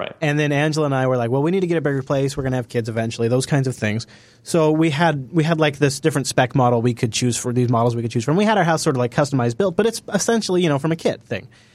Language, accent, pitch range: English, American, 125-160 Hz